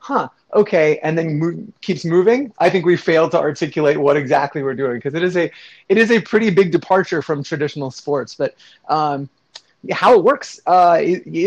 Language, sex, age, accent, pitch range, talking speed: English, male, 30-49, American, 150-185 Hz, 190 wpm